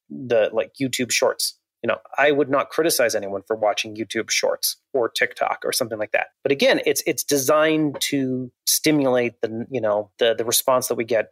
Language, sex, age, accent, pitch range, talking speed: English, male, 30-49, American, 110-140 Hz, 195 wpm